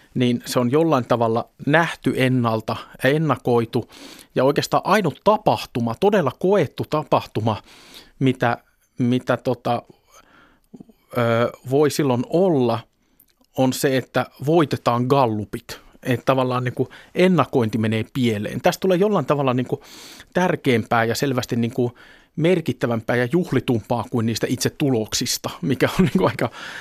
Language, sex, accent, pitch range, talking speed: Finnish, male, native, 120-150 Hz, 105 wpm